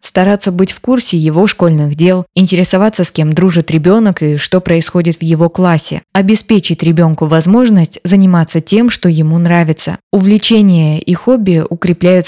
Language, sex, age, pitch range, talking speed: Russian, female, 20-39, 170-205 Hz, 145 wpm